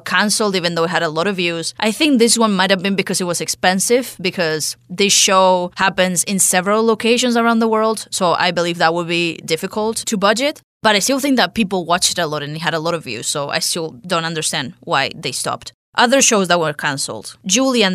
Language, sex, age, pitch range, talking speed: English, female, 20-39, 165-205 Hz, 235 wpm